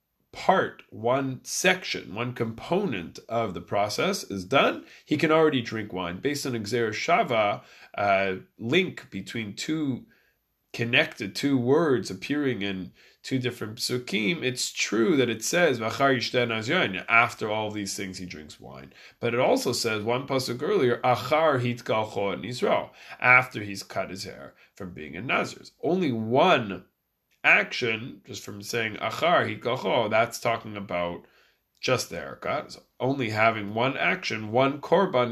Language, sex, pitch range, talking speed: English, male, 100-130 Hz, 135 wpm